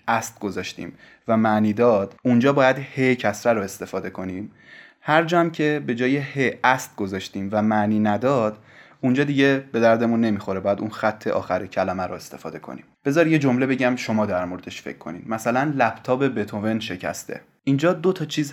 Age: 20-39